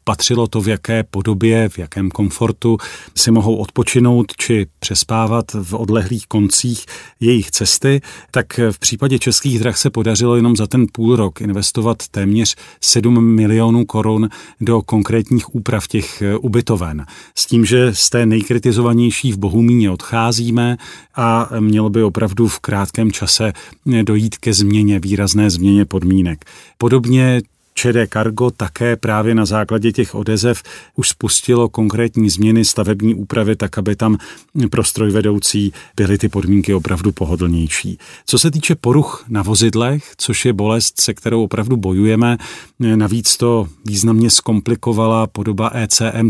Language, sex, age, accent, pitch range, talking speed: Czech, male, 40-59, native, 105-120 Hz, 135 wpm